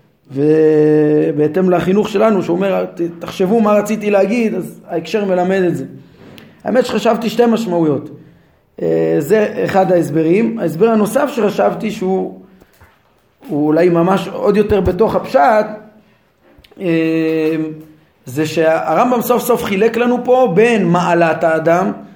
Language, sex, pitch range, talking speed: Hebrew, male, 165-215 Hz, 110 wpm